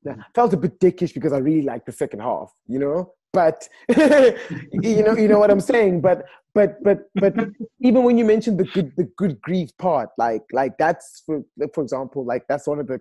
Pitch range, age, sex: 120-175 Hz, 20-39, male